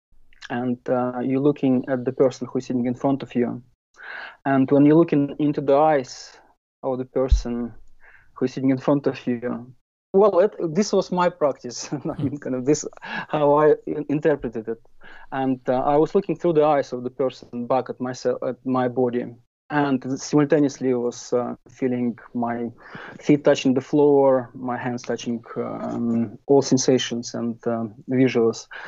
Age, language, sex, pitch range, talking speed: 30-49, English, male, 125-145 Hz, 170 wpm